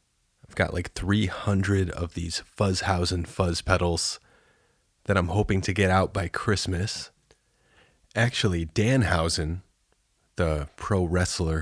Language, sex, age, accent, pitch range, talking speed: English, male, 30-49, American, 85-100 Hz, 110 wpm